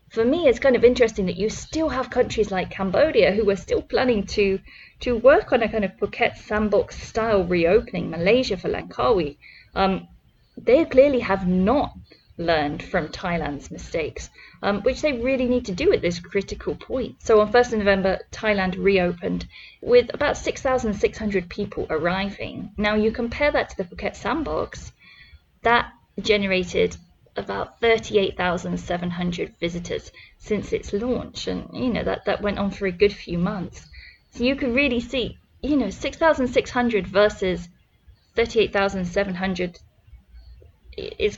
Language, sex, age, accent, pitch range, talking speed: English, female, 20-39, British, 180-240 Hz, 150 wpm